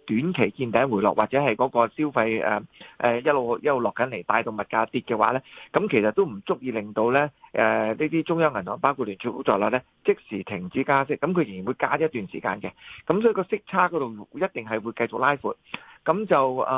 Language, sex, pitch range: Chinese, male, 115-155 Hz